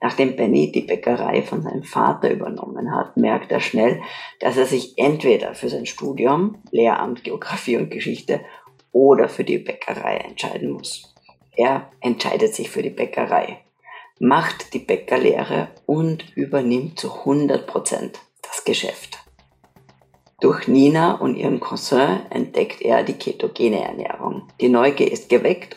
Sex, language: female, German